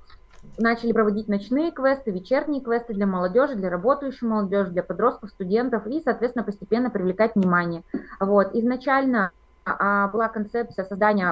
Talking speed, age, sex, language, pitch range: 125 wpm, 20-39, female, Russian, 190-220 Hz